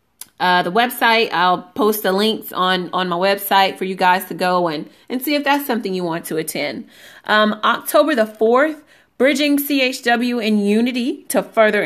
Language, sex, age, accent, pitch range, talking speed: English, female, 30-49, American, 205-255 Hz, 180 wpm